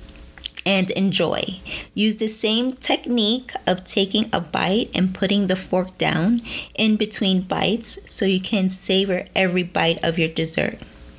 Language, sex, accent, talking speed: English, female, American, 145 wpm